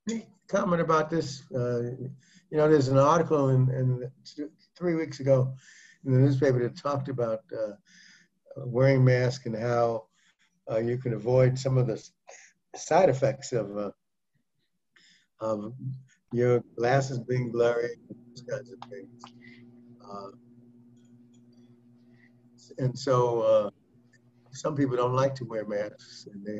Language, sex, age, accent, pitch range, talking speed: English, male, 60-79, American, 120-135 Hz, 135 wpm